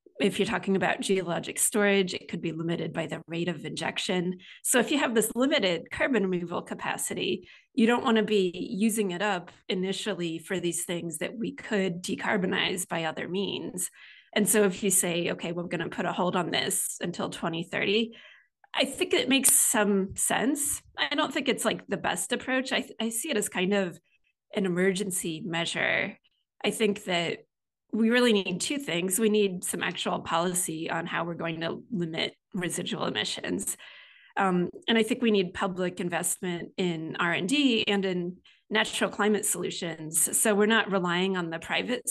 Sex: female